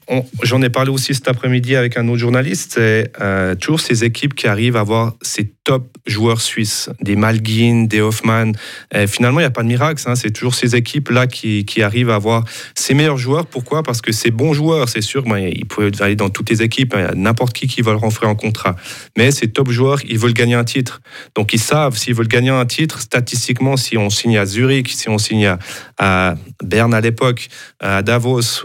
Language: French